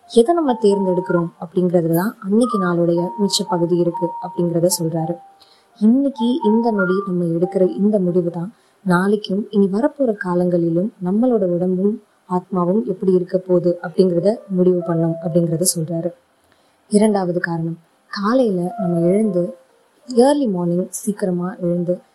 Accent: Indian